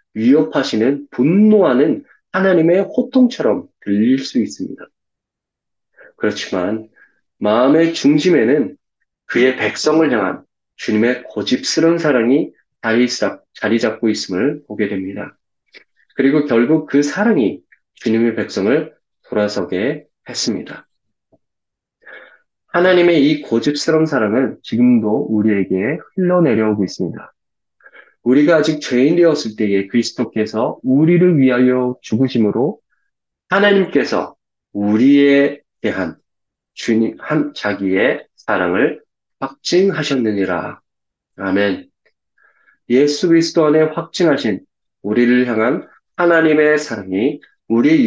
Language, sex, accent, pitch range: Korean, male, native, 110-155 Hz